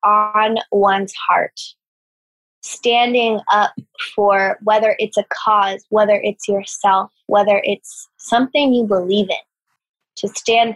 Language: English